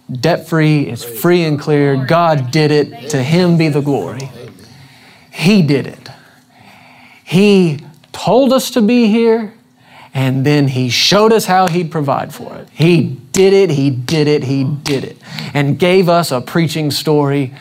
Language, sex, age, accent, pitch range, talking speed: English, male, 30-49, American, 140-170 Hz, 160 wpm